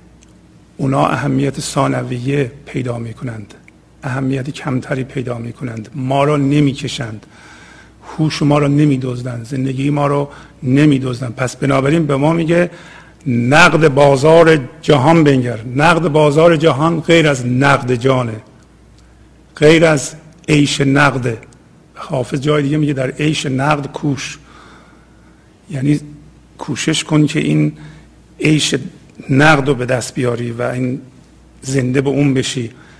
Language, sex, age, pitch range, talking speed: Persian, male, 50-69, 130-150 Hz, 115 wpm